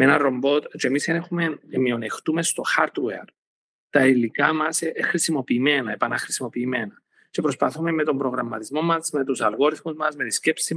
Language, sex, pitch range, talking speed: Greek, male, 135-165 Hz, 155 wpm